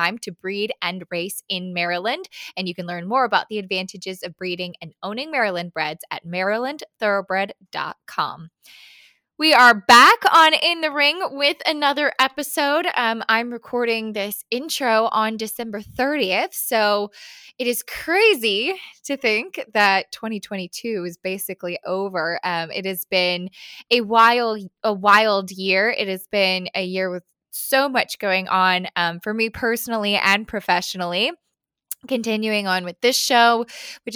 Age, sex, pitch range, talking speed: 10-29, female, 185-230 Hz, 145 wpm